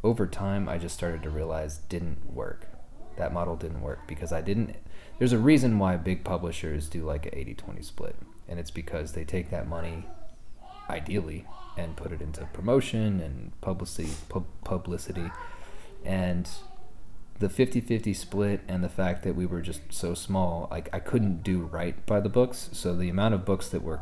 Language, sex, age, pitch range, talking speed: English, male, 30-49, 80-95 Hz, 175 wpm